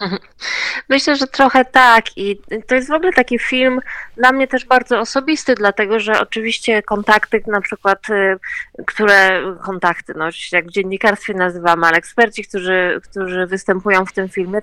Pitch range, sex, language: 195-235 Hz, female, Polish